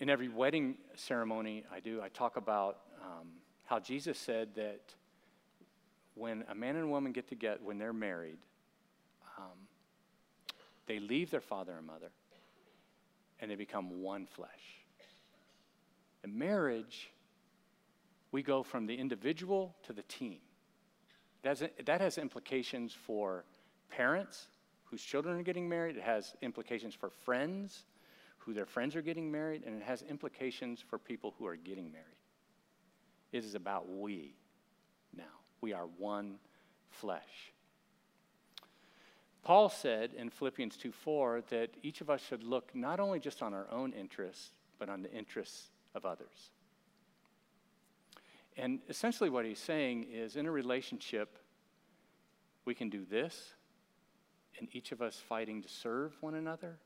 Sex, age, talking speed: male, 50-69, 140 wpm